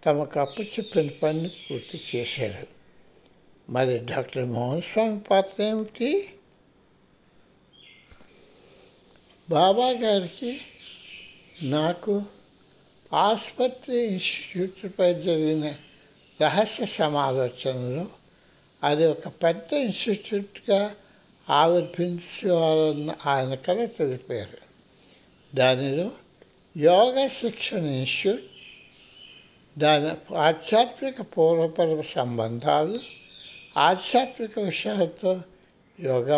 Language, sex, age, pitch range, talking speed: Hindi, male, 60-79, 155-210 Hz, 55 wpm